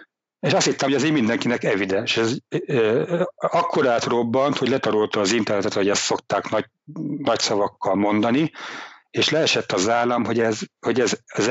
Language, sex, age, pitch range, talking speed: Hungarian, male, 60-79, 105-120 Hz, 155 wpm